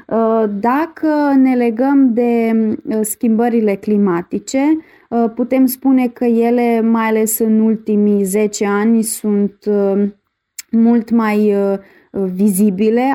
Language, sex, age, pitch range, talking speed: Romanian, female, 20-39, 210-265 Hz, 90 wpm